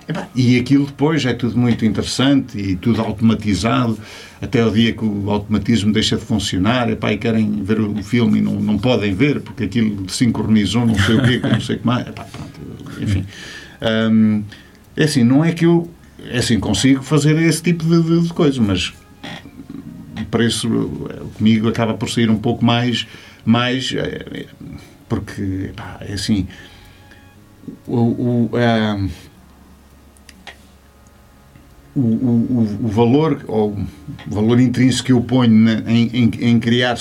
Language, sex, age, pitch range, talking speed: Portuguese, male, 50-69, 105-130 Hz, 155 wpm